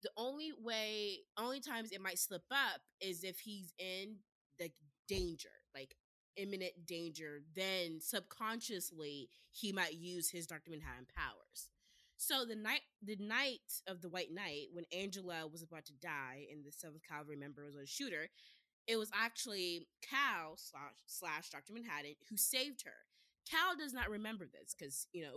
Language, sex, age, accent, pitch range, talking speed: English, female, 20-39, American, 155-220 Hz, 165 wpm